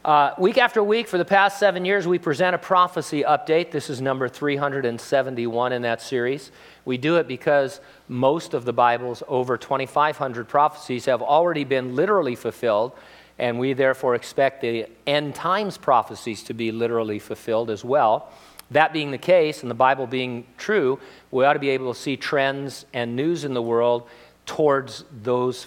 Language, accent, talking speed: English, American, 190 wpm